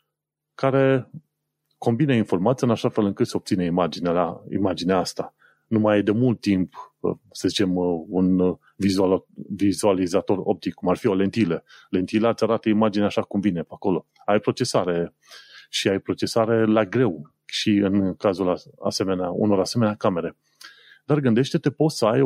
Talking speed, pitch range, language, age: 155 wpm, 100-135 Hz, Romanian, 30-49